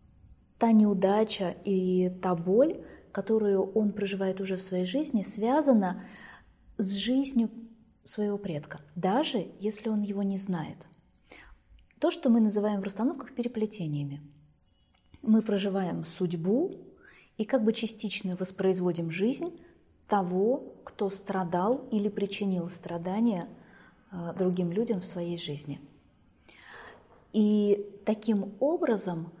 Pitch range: 170-220 Hz